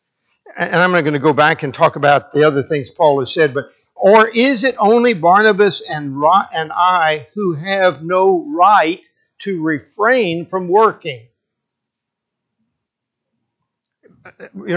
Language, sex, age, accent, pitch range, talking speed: English, male, 60-79, American, 155-215 Hz, 140 wpm